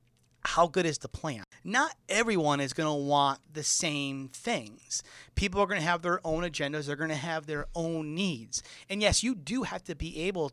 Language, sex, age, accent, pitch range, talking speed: English, male, 30-49, American, 125-180 Hz, 210 wpm